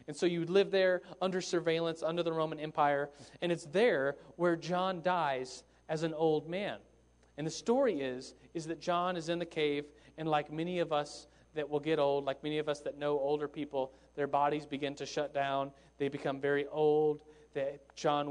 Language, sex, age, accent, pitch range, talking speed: English, male, 40-59, American, 145-170 Hz, 195 wpm